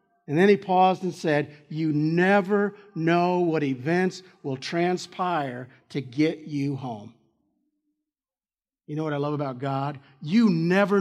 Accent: American